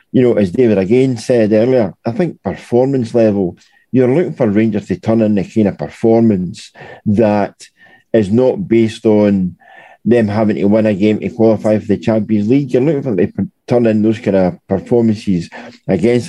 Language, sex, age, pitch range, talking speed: English, male, 50-69, 105-120 Hz, 190 wpm